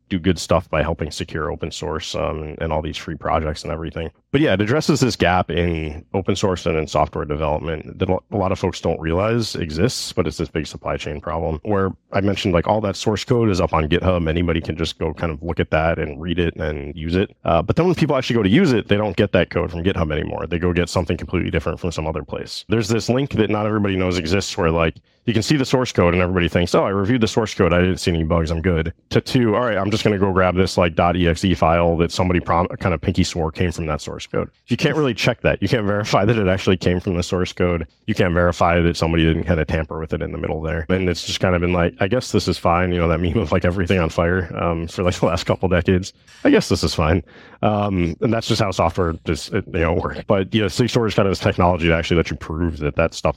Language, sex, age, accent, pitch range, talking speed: English, male, 30-49, American, 80-100 Hz, 280 wpm